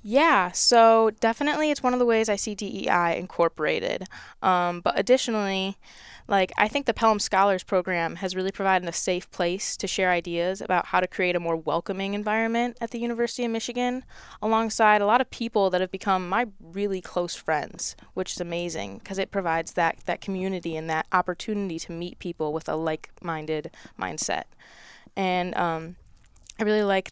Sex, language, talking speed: female, English, 175 wpm